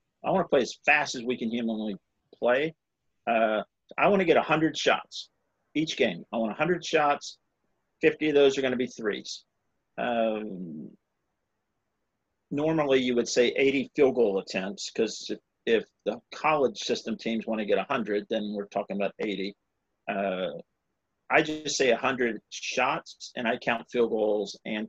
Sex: male